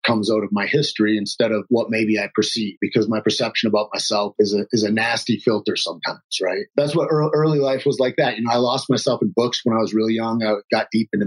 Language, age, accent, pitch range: English, 30-49, American, 110-140 Hz